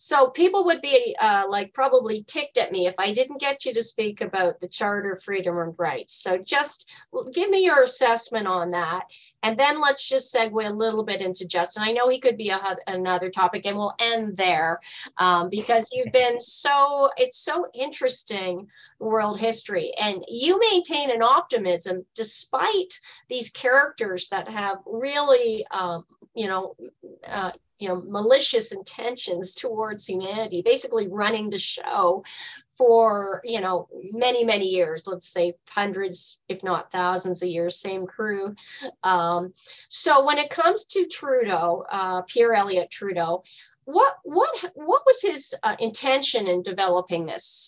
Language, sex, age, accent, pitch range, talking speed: English, female, 40-59, American, 185-270 Hz, 160 wpm